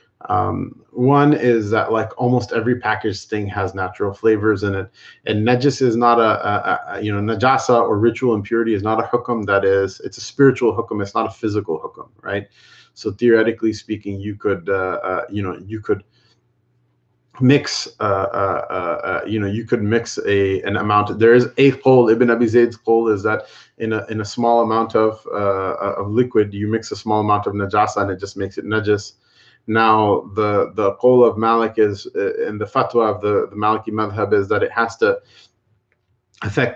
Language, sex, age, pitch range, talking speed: English, male, 30-49, 105-120 Hz, 195 wpm